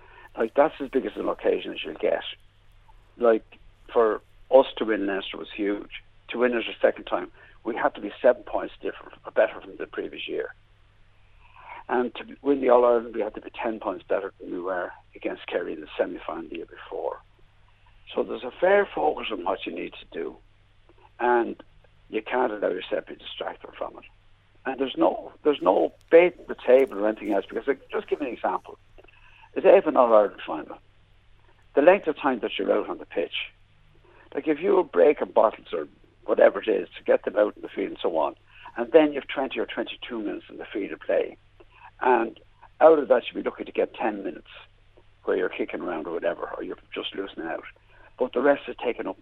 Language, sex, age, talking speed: English, male, 60-79, 220 wpm